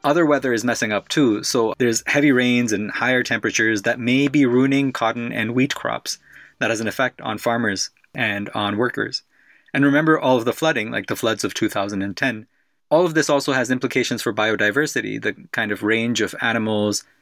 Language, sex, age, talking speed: English, male, 20-39, 190 wpm